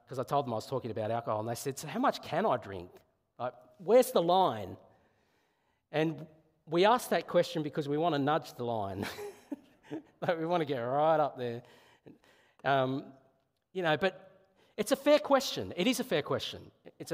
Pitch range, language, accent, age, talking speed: 145-190 Hz, English, Australian, 40-59, 190 wpm